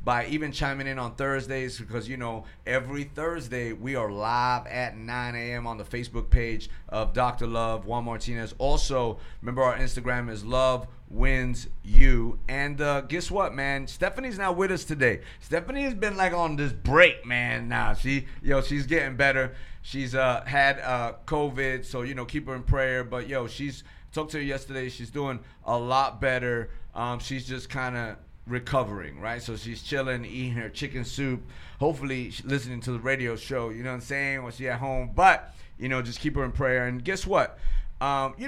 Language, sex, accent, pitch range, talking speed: English, male, American, 120-140 Hz, 185 wpm